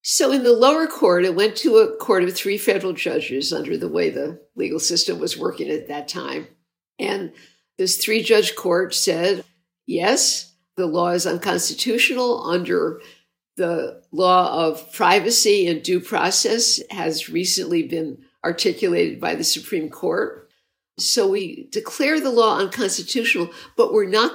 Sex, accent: female, American